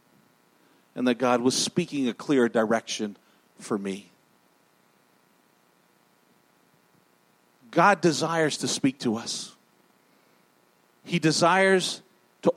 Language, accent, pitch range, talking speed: English, American, 135-200 Hz, 90 wpm